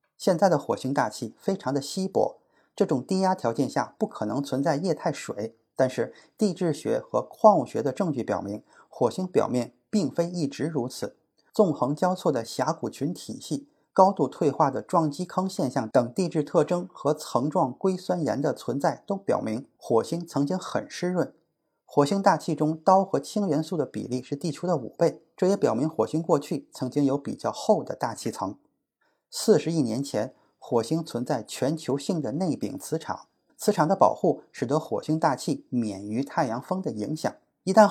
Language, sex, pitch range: Chinese, male, 140-175 Hz